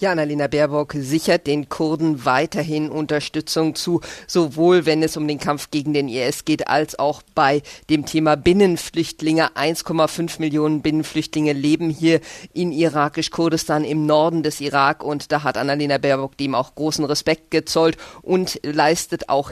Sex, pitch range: female, 150-165 Hz